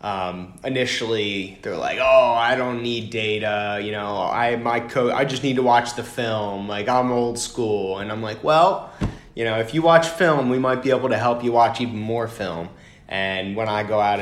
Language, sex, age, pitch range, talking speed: Hungarian, male, 20-39, 95-115 Hz, 215 wpm